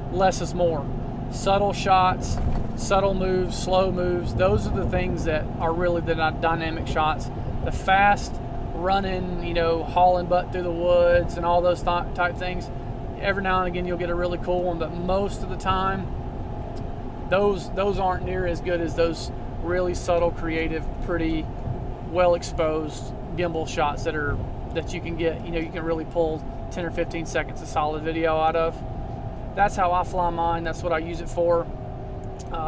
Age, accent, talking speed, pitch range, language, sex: 30-49, American, 180 wpm, 145-180 Hz, English, male